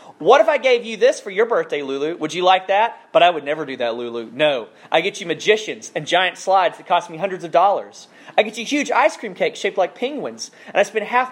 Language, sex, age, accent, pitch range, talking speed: English, male, 30-49, American, 160-240 Hz, 260 wpm